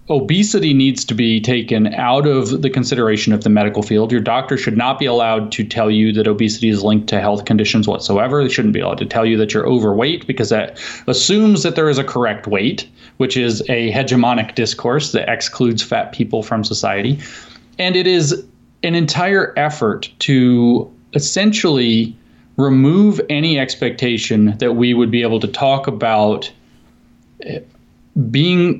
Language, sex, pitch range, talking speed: English, male, 110-130 Hz, 165 wpm